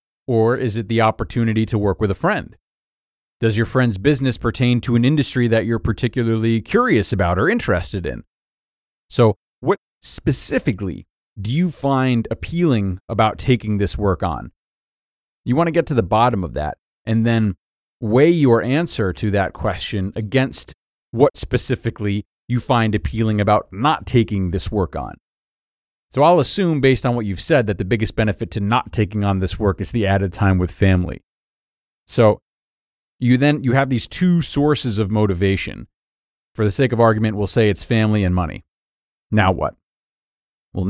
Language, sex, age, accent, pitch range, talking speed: English, male, 30-49, American, 100-125 Hz, 170 wpm